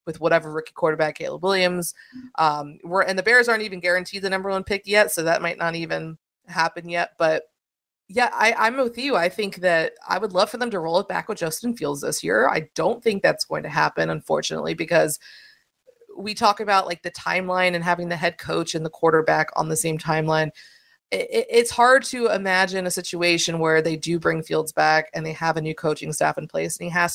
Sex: female